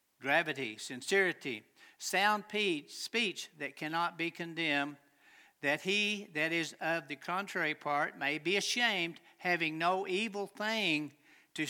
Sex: male